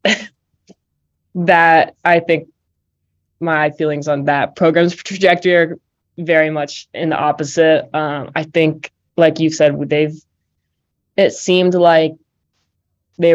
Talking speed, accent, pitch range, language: 115 wpm, American, 145-160 Hz, English